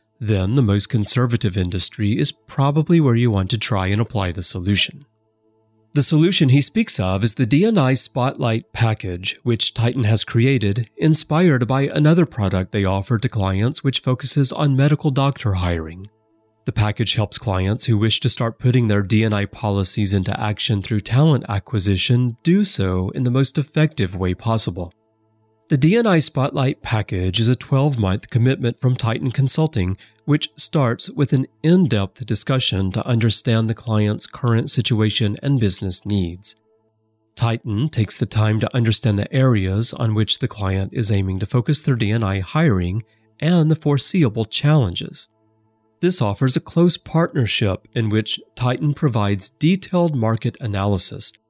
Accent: American